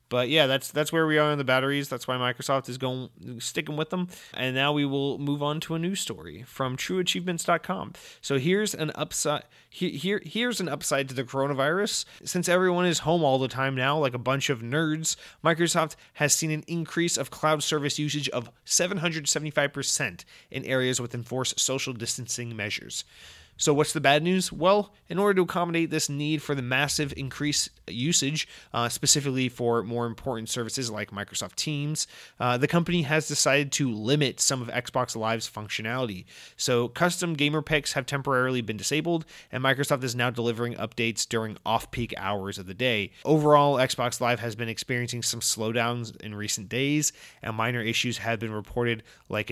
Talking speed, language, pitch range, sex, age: 180 wpm, English, 120-155 Hz, male, 30-49